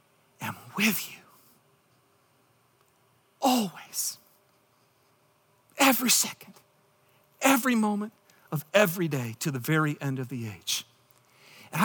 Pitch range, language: 150-250 Hz, English